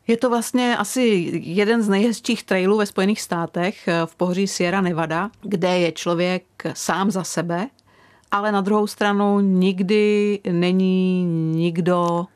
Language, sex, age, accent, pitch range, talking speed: Czech, female, 40-59, native, 175-205 Hz, 135 wpm